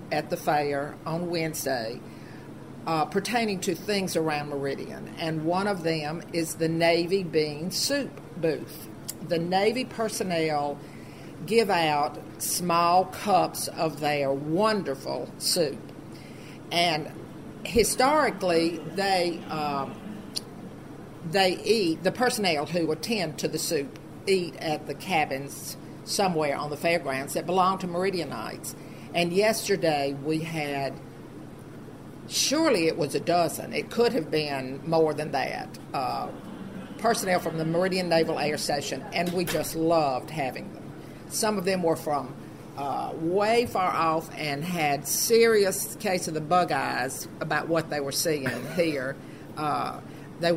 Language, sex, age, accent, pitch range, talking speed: English, female, 50-69, American, 150-185 Hz, 135 wpm